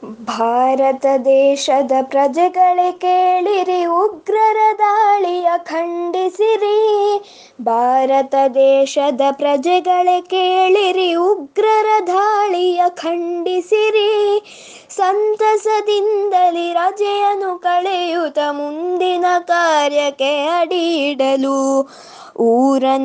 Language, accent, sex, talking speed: Kannada, native, female, 45 wpm